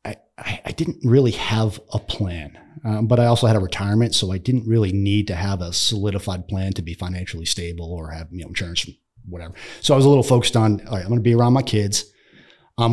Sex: male